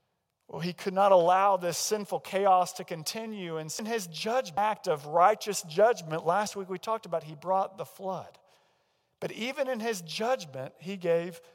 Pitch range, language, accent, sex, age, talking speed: 175-225 Hz, English, American, male, 40-59, 175 wpm